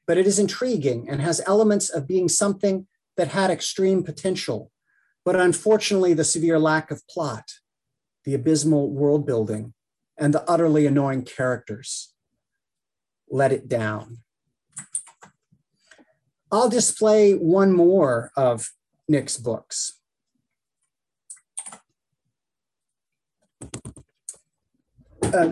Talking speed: 95 wpm